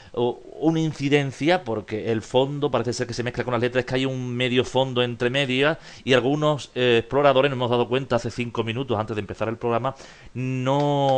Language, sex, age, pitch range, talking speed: Spanish, male, 40-59, 110-125 Hz, 205 wpm